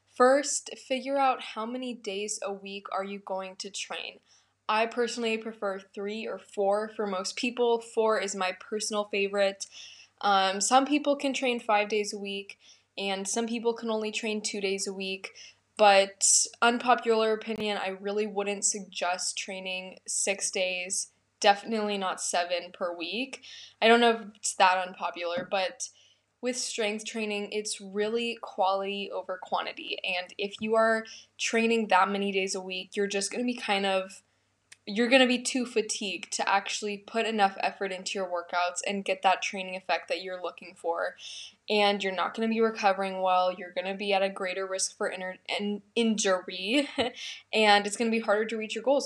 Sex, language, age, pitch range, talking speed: female, English, 10-29, 190-225 Hz, 175 wpm